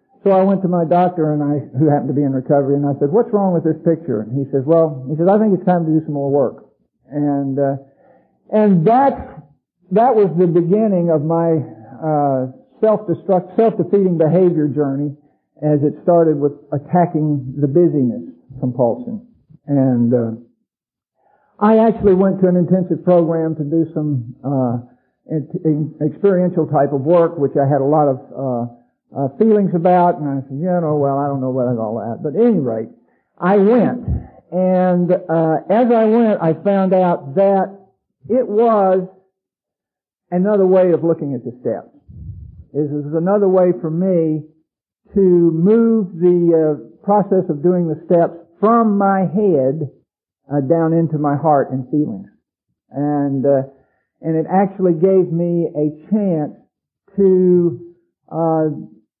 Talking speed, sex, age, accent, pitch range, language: 165 wpm, male, 50-69, American, 145-185 Hz, English